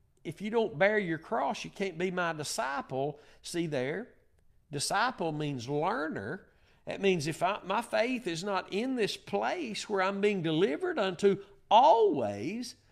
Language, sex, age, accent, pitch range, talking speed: English, male, 50-69, American, 130-205 Hz, 155 wpm